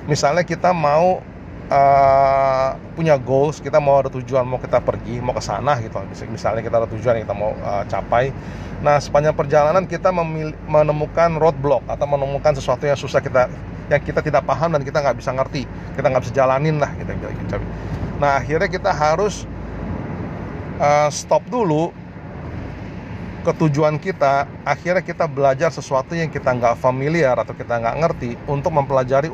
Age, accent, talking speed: 30-49, native, 155 wpm